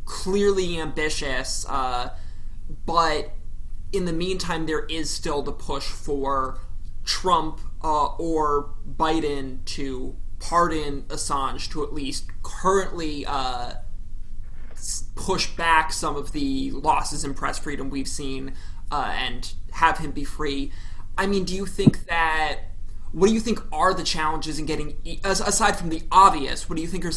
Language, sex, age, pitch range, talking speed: English, male, 20-39, 130-170 Hz, 145 wpm